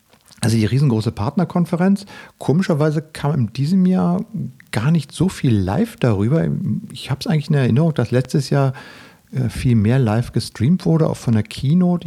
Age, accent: 50-69, German